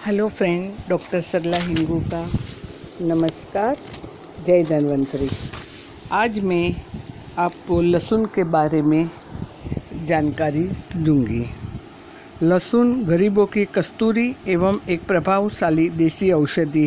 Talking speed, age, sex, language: 95 wpm, 50-69, female, Hindi